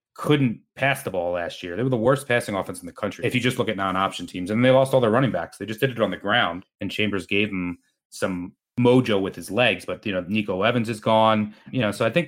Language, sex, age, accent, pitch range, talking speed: English, male, 30-49, American, 100-125 Hz, 280 wpm